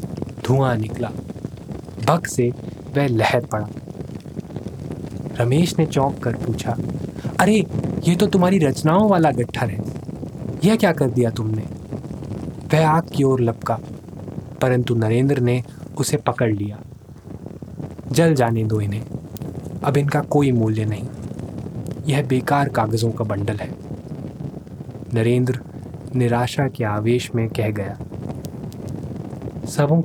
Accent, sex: native, male